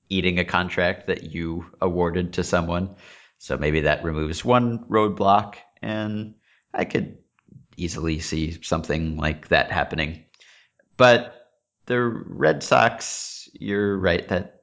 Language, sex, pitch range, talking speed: English, male, 85-105 Hz, 125 wpm